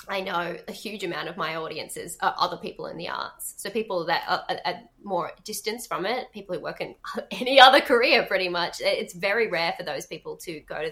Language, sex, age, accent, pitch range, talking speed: English, female, 20-39, Australian, 175-215 Hz, 225 wpm